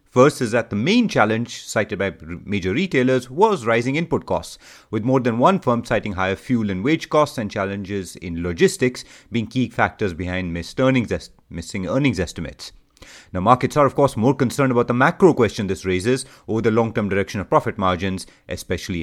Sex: male